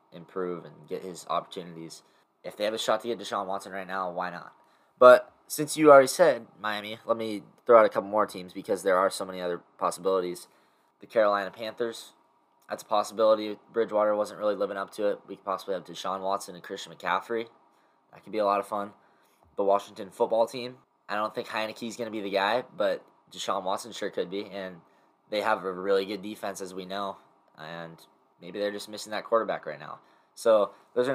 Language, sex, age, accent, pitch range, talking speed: English, male, 10-29, American, 95-110 Hz, 210 wpm